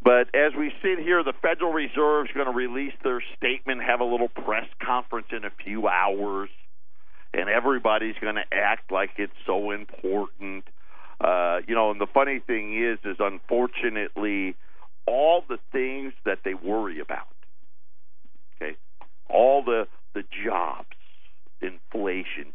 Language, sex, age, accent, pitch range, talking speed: English, male, 50-69, American, 105-130 Hz, 145 wpm